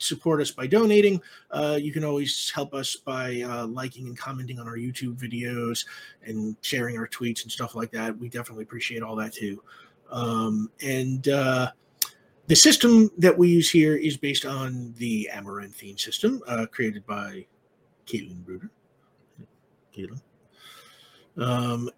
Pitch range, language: 120-165 Hz, English